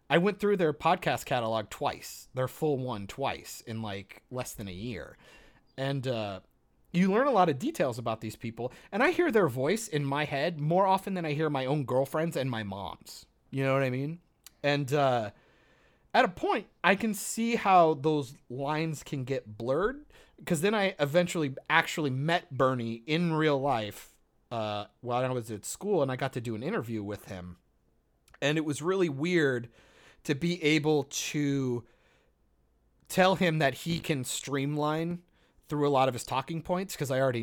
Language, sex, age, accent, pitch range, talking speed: English, male, 30-49, American, 115-160 Hz, 185 wpm